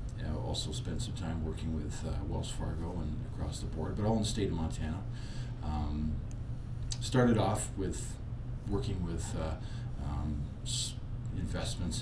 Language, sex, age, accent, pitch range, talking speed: English, male, 40-59, American, 85-120 Hz, 145 wpm